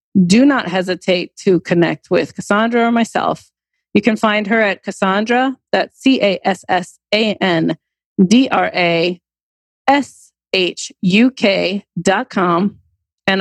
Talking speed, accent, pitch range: 85 wpm, American, 180-230 Hz